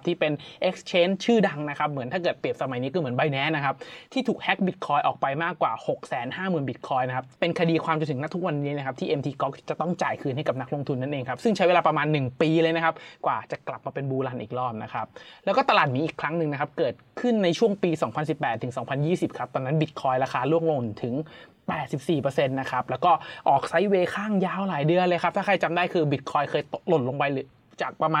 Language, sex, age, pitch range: Thai, male, 20-39, 130-165 Hz